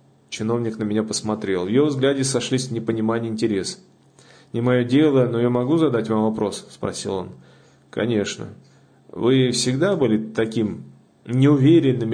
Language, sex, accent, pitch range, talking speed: Russian, male, native, 110-140 Hz, 140 wpm